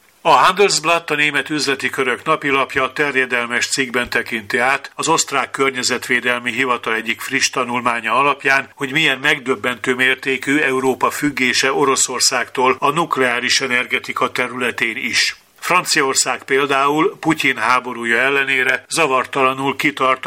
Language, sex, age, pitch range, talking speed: Hungarian, male, 50-69, 125-150 Hz, 115 wpm